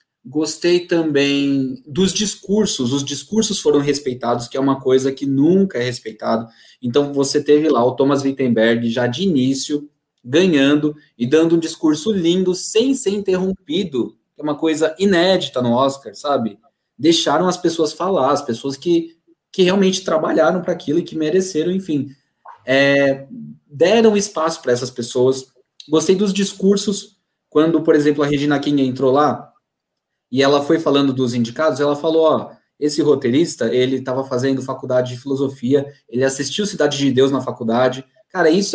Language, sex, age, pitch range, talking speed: Portuguese, male, 20-39, 130-170 Hz, 155 wpm